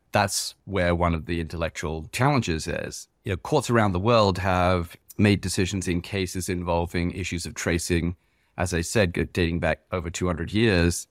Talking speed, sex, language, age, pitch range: 165 wpm, male, English, 40-59, 85-105 Hz